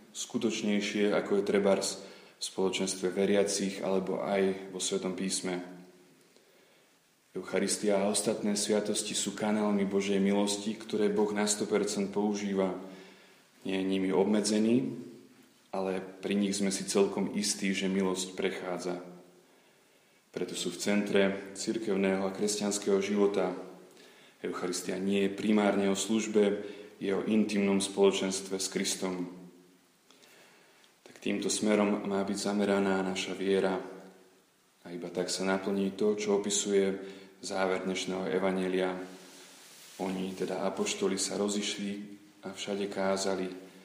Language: Slovak